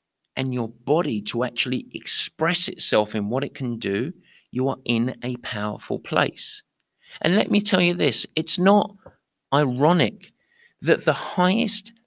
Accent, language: British, English